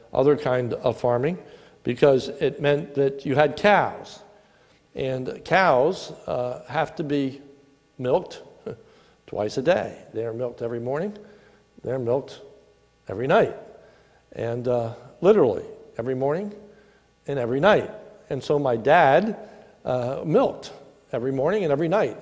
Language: English